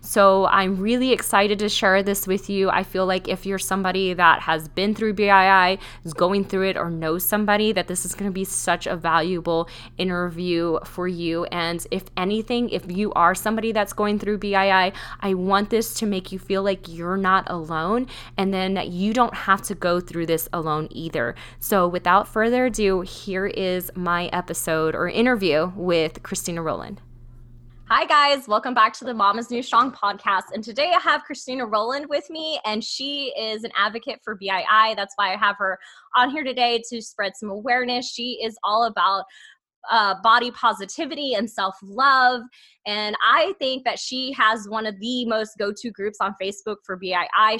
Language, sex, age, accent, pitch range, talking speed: English, female, 20-39, American, 185-240 Hz, 185 wpm